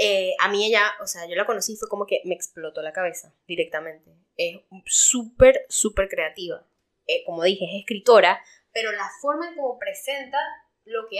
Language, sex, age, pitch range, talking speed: Spanish, female, 10-29, 195-280 Hz, 190 wpm